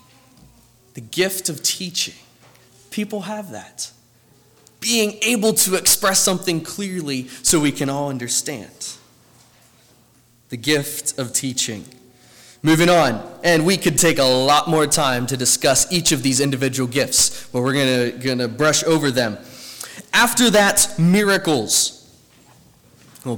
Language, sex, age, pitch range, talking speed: English, male, 20-39, 130-185 Hz, 130 wpm